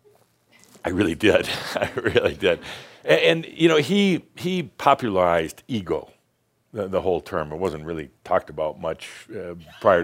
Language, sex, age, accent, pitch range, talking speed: English, male, 60-79, American, 95-125 Hz, 150 wpm